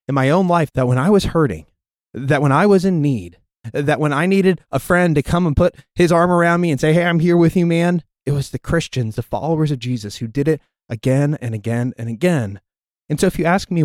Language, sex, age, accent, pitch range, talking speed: English, male, 20-39, American, 115-155 Hz, 255 wpm